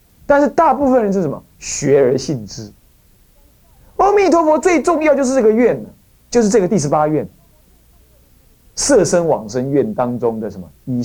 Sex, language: male, Chinese